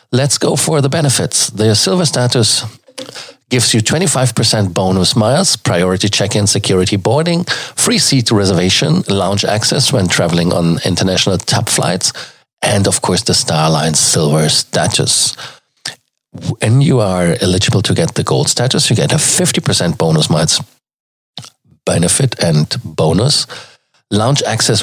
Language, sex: German, male